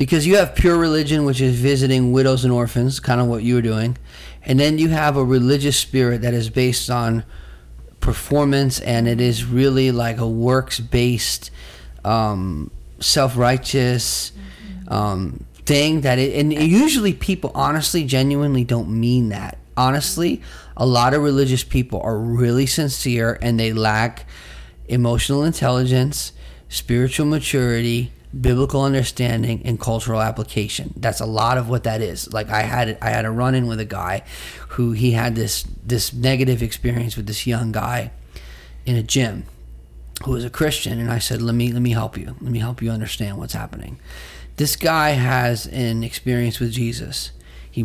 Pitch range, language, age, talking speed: 110-130 Hz, English, 30-49, 165 wpm